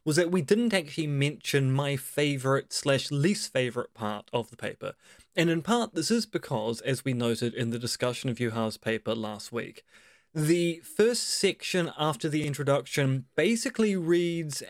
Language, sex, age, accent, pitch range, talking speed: English, male, 20-39, British, 120-165 Hz, 165 wpm